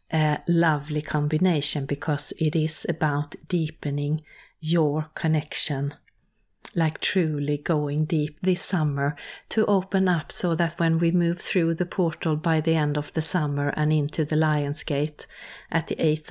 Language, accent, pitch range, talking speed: English, Swedish, 155-190 Hz, 145 wpm